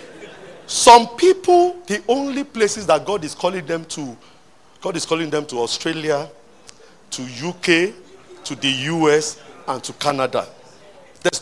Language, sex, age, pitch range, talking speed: English, male, 40-59, 165-250 Hz, 135 wpm